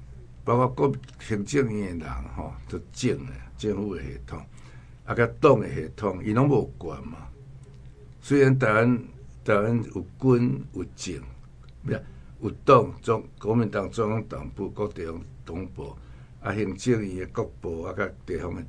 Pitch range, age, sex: 80-130 Hz, 60-79, male